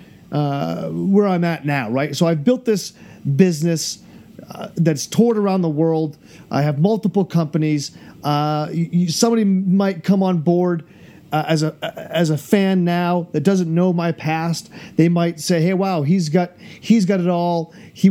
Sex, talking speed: male, 170 wpm